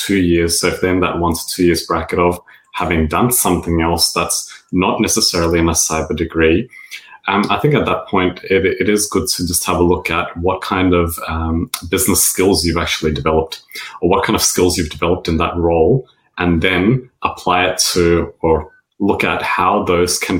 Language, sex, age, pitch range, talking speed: English, male, 30-49, 80-90 Hz, 205 wpm